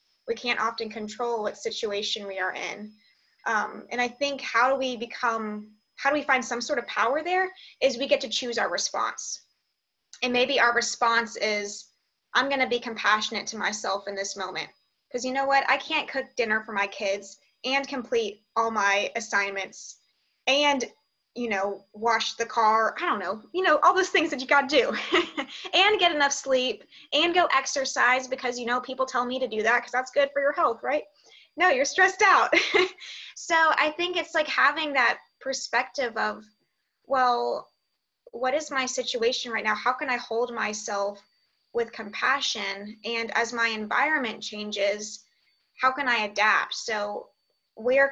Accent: American